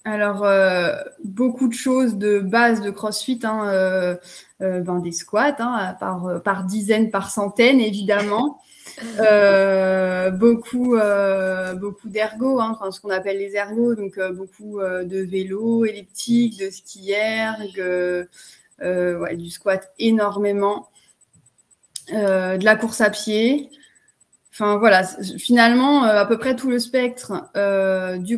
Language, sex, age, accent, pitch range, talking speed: French, female, 20-39, French, 190-230 Hz, 135 wpm